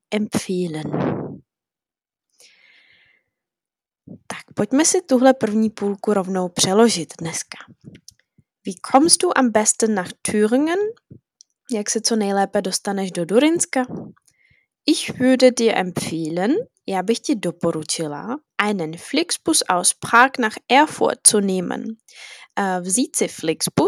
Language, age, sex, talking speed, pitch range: Czech, 10-29, female, 100 wpm, 185-255 Hz